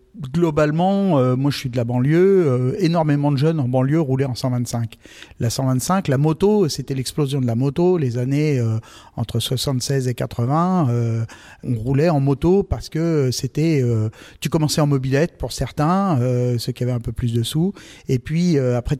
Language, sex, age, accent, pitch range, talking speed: French, male, 40-59, French, 125-150 Hz, 195 wpm